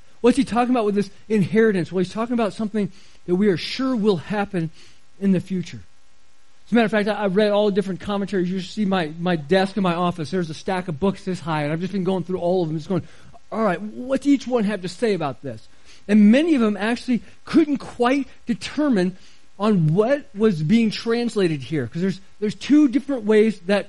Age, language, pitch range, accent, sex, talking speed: 40-59, English, 180-235 Hz, American, male, 225 wpm